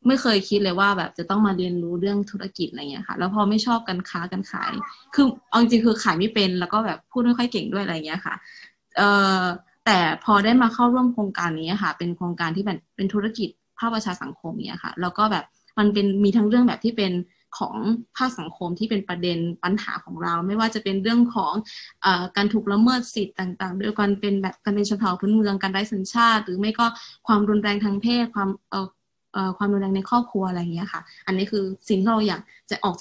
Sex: female